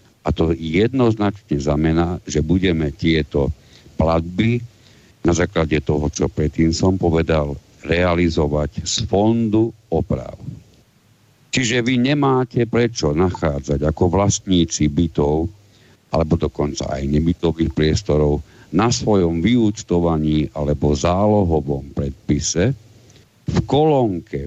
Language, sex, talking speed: Slovak, male, 100 wpm